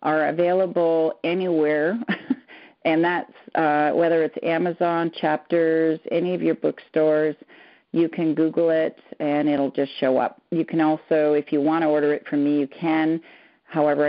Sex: female